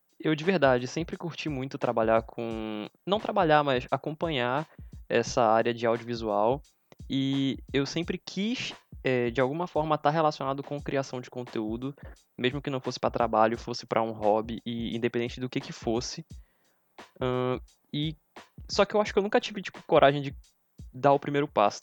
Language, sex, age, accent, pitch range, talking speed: Portuguese, male, 20-39, Brazilian, 110-135 Hz, 175 wpm